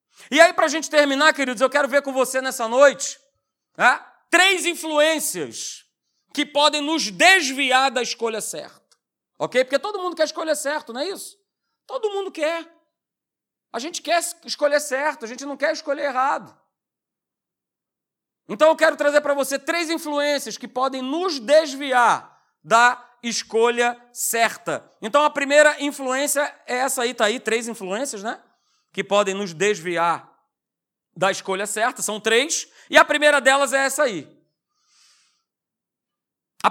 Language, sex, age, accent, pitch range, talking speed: Portuguese, male, 40-59, Brazilian, 220-305 Hz, 150 wpm